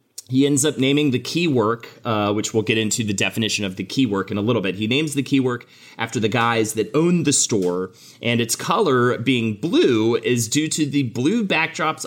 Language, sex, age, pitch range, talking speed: English, male, 30-49, 110-145 Hz, 215 wpm